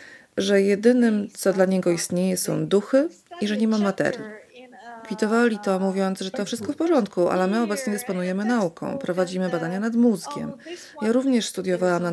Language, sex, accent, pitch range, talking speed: Polish, female, native, 180-230 Hz, 170 wpm